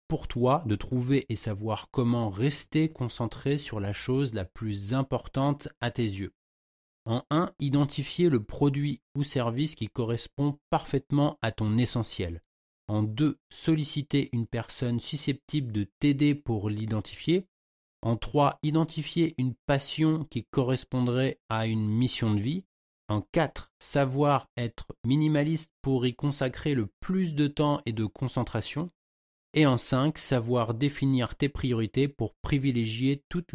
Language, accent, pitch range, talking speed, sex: French, French, 115-145 Hz, 140 wpm, male